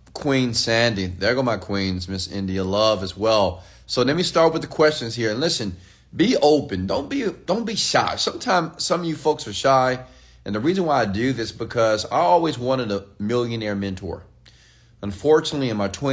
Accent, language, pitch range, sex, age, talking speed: American, English, 95-130 Hz, male, 30-49, 195 wpm